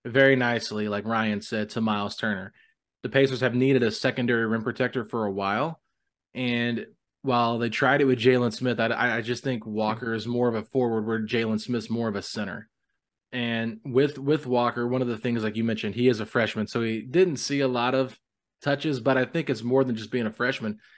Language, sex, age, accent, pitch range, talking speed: English, male, 20-39, American, 115-135 Hz, 220 wpm